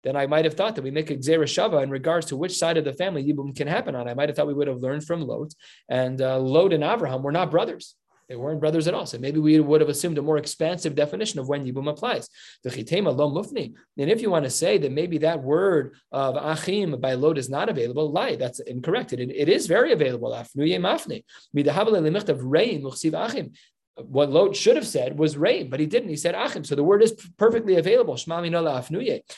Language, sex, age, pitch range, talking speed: English, male, 20-39, 140-175 Hz, 215 wpm